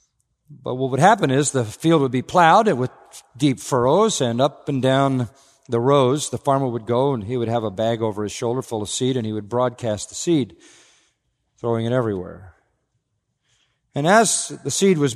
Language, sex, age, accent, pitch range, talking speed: English, male, 50-69, American, 125-165 Hz, 195 wpm